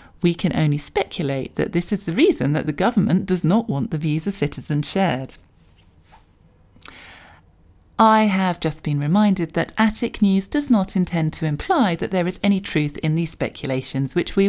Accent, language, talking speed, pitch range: British, English, 180 wpm, 140-200 Hz